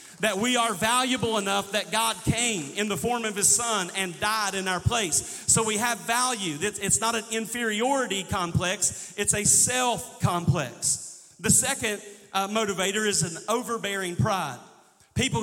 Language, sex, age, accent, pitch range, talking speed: English, male, 40-59, American, 190-225 Hz, 160 wpm